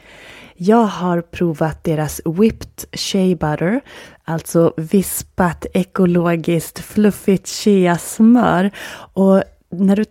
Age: 30-49